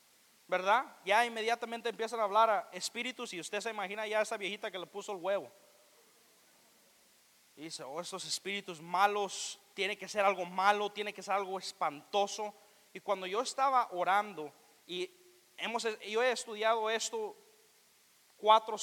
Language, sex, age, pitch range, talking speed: Spanish, male, 30-49, 185-215 Hz, 155 wpm